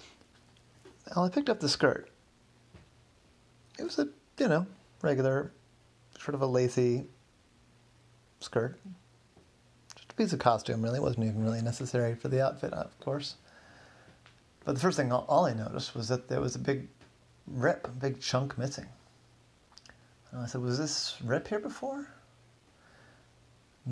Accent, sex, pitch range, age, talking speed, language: American, male, 120-160 Hz, 30-49, 150 wpm, English